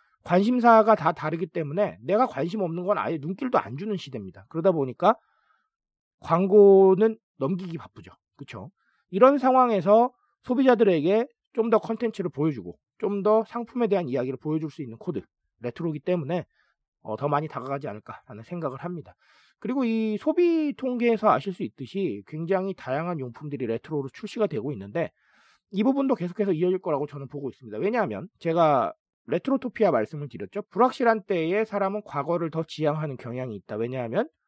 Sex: male